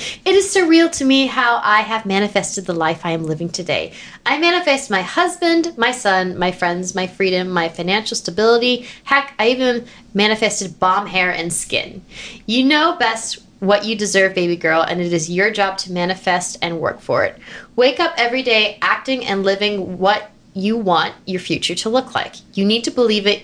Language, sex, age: English, female, 20-39